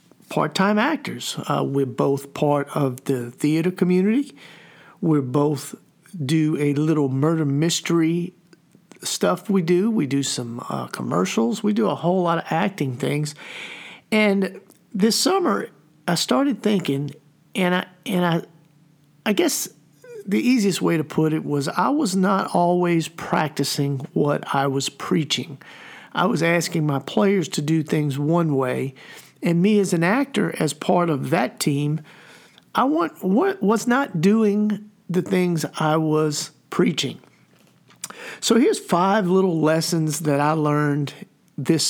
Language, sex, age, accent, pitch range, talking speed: English, male, 50-69, American, 150-190 Hz, 145 wpm